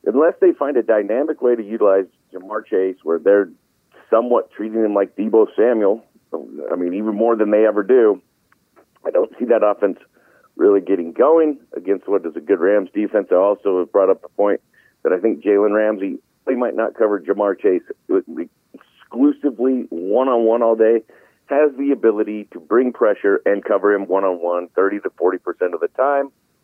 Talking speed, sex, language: 180 wpm, male, English